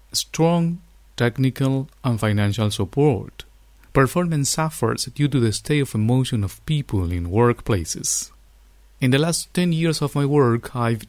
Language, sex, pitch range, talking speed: English, male, 100-130 Hz, 140 wpm